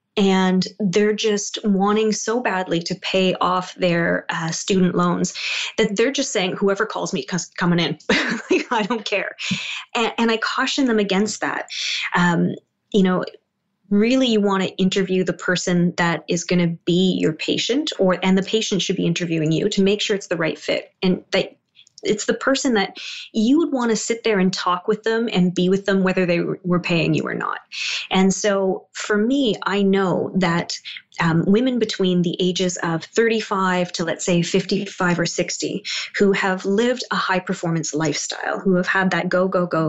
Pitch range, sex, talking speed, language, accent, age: 175-205 Hz, female, 190 wpm, English, American, 20-39